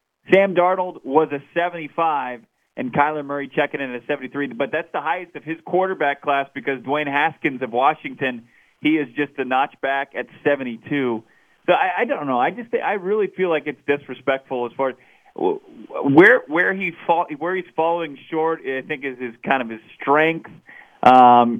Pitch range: 135-170 Hz